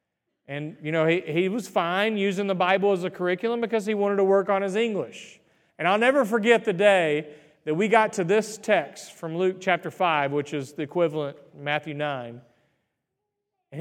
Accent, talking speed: American, 195 wpm